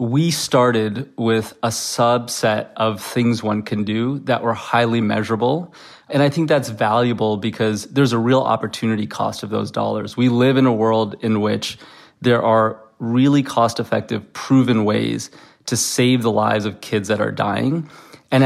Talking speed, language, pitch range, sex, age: 165 wpm, English, 110-125 Hz, male, 20-39